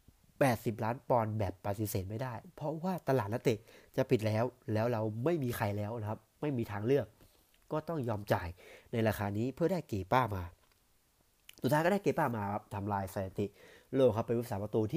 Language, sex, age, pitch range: Thai, male, 30-49, 100-130 Hz